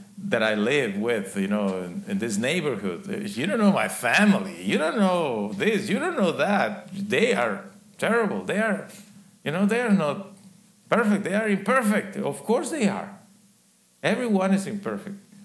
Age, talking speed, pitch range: 50-69, 170 wpm, 195-210 Hz